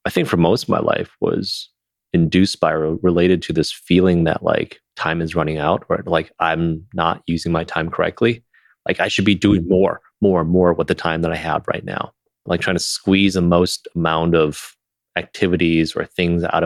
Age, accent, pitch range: 30-49, American, 80-95 Hz